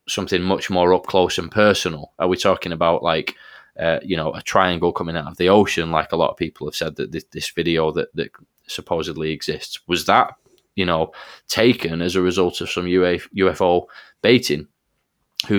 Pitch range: 85-95 Hz